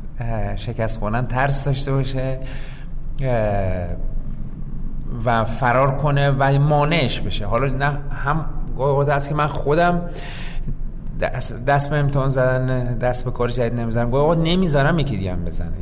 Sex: male